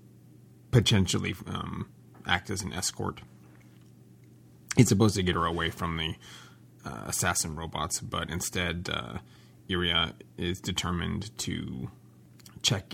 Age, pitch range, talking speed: 30-49, 65-95 Hz, 115 wpm